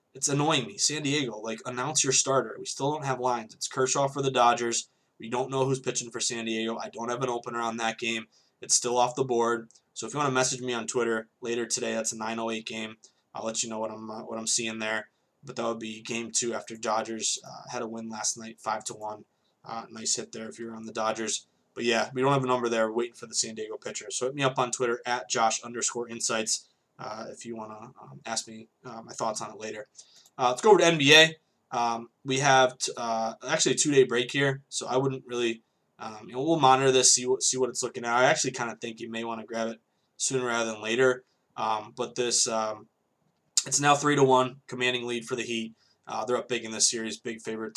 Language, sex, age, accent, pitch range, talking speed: English, male, 20-39, American, 115-130 Hz, 255 wpm